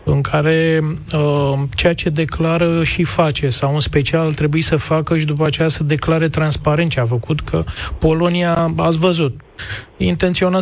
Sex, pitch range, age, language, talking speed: male, 150-190 Hz, 30-49, Romanian, 160 wpm